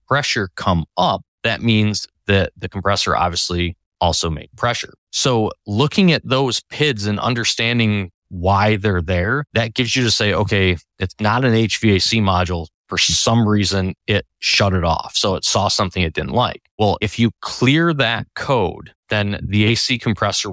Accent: American